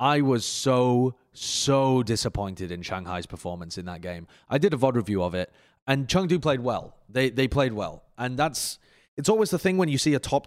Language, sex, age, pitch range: English, male, 20-39, 95-130 Hz